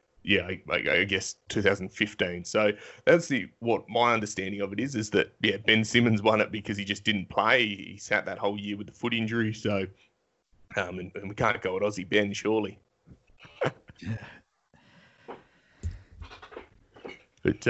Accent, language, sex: Australian, English, male